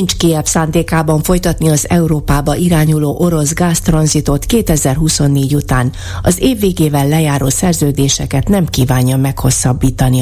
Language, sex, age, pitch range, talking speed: Hungarian, female, 30-49, 130-165 Hz, 105 wpm